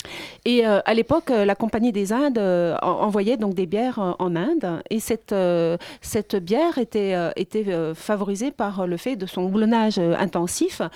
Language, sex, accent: French, female, French